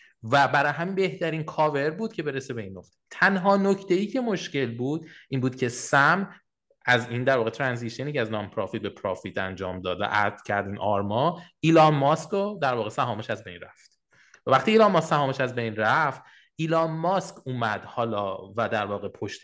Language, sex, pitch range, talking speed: English, male, 105-155 Hz, 195 wpm